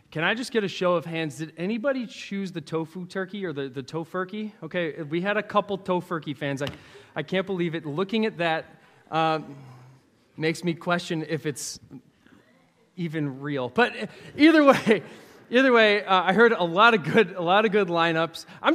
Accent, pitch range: American, 155-200 Hz